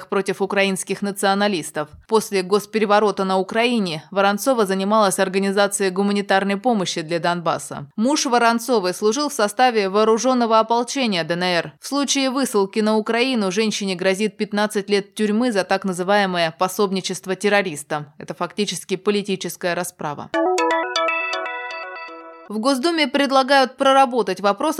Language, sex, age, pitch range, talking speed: Russian, female, 20-39, 190-240 Hz, 110 wpm